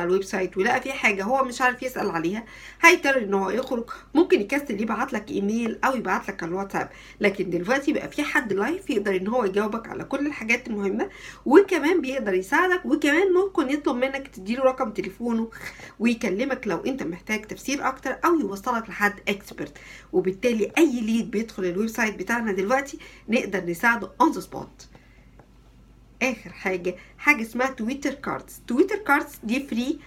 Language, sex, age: Arabic, female, 50-69